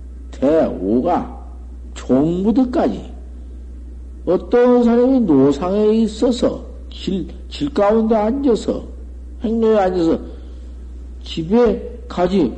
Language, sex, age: Korean, male, 50-69